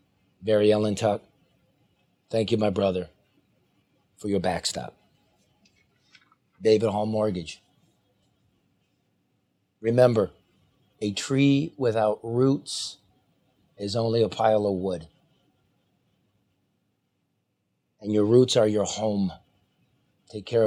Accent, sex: American, male